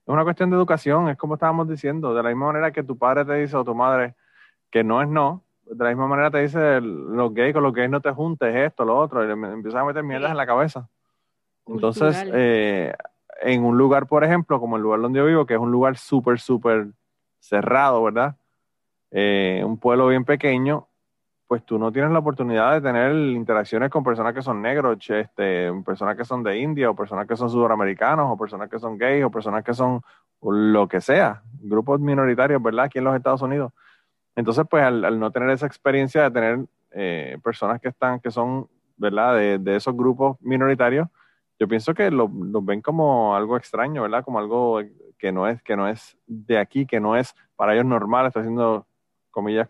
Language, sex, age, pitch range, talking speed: Spanish, male, 30-49, 115-140 Hz, 210 wpm